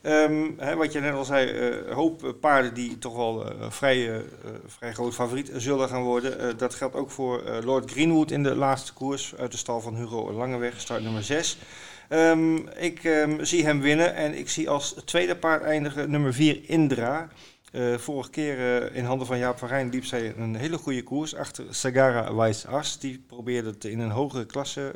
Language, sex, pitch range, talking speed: Dutch, male, 120-145 Hz, 195 wpm